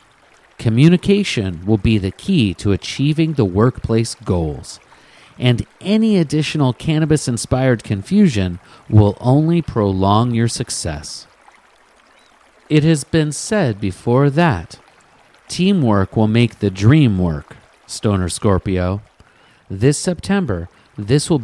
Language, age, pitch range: English, 40-59, 100-155 Hz